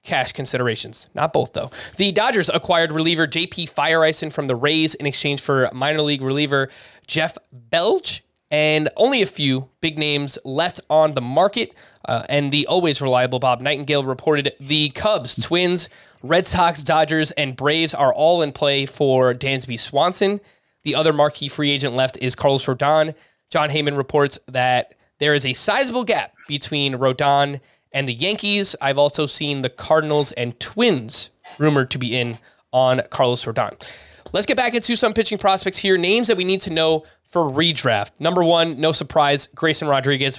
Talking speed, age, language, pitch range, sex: 170 wpm, 20-39, English, 135-170 Hz, male